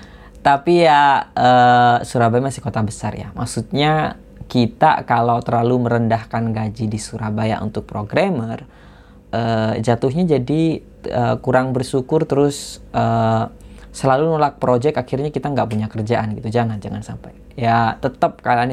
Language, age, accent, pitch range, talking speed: Indonesian, 20-39, native, 110-135 Hz, 130 wpm